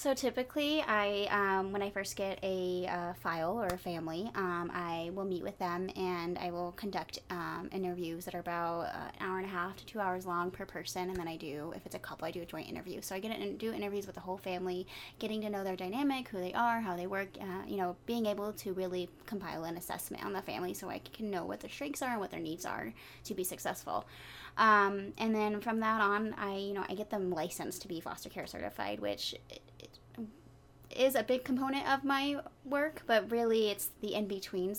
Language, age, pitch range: English, 20-39, 180-220 Hz